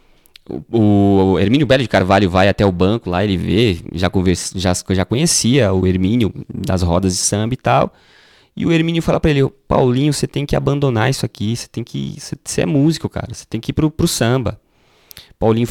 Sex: male